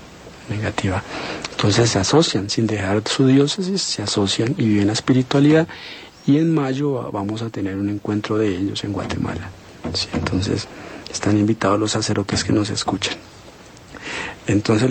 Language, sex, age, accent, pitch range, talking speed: Spanish, male, 50-69, Colombian, 105-130 Hz, 145 wpm